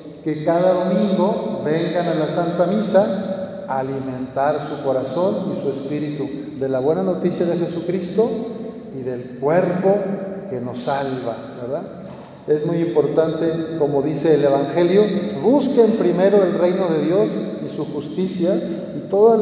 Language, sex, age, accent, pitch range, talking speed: Spanish, male, 50-69, Mexican, 145-185 Hz, 140 wpm